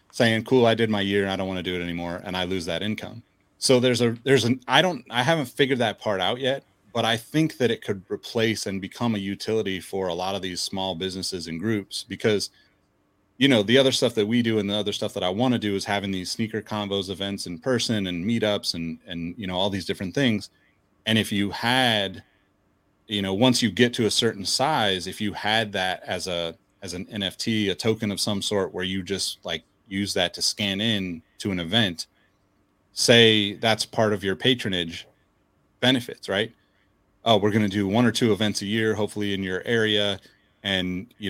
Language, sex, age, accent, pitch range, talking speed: English, male, 30-49, American, 95-115 Hz, 220 wpm